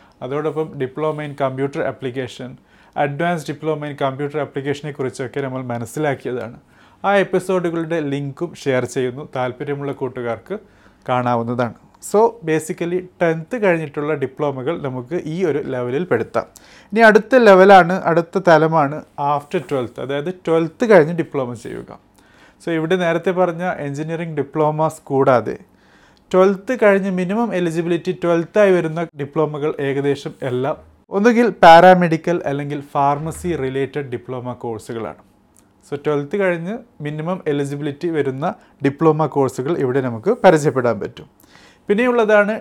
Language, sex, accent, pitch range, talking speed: Malayalam, male, native, 135-175 Hz, 110 wpm